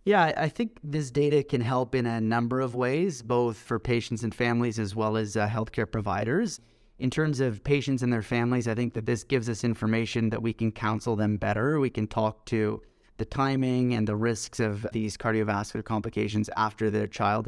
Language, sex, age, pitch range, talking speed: English, male, 20-39, 110-125 Hz, 205 wpm